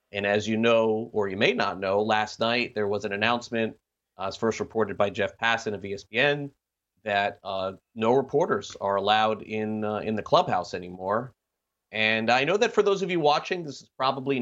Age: 30-49